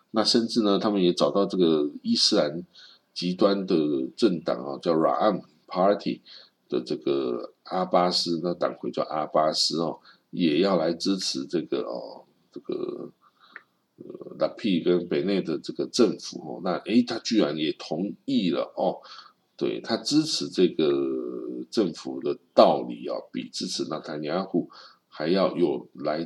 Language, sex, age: Chinese, male, 50-69